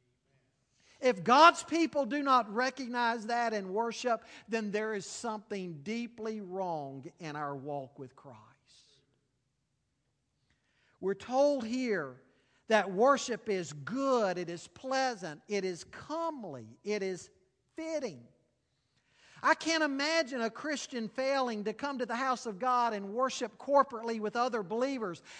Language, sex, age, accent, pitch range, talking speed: English, male, 50-69, American, 205-295 Hz, 130 wpm